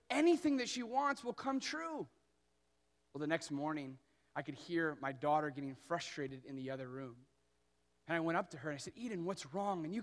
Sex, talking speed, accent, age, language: male, 215 wpm, American, 30-49, English